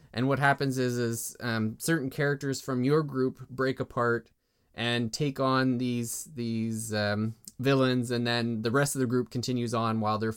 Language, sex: English, male